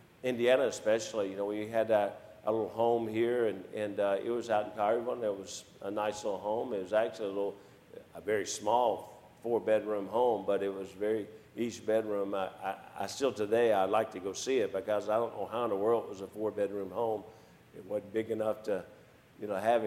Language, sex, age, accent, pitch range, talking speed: English, male, 50-69, American, 105-120 Hz, 220 wpm